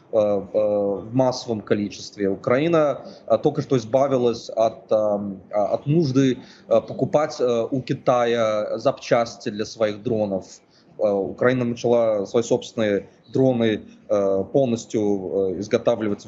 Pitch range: 105-140 Hz